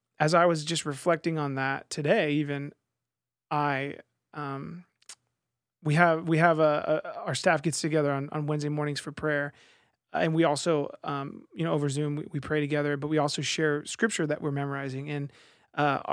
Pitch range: 150-170 Hz